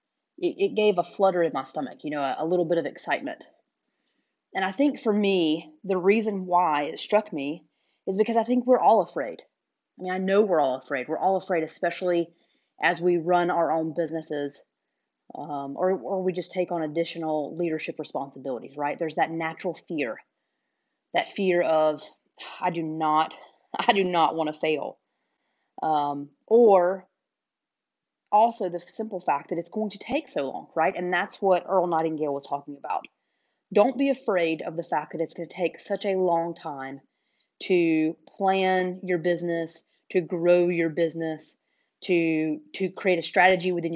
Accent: American